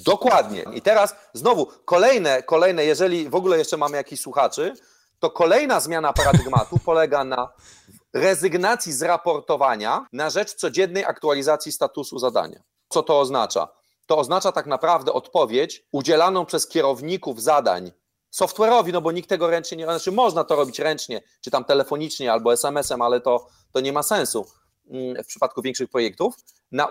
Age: 30-49